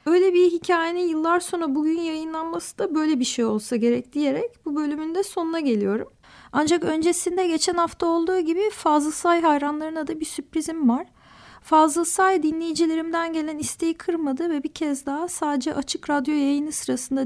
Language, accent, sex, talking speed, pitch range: Turkish, native, female, 165 wpm, 285-335 Hz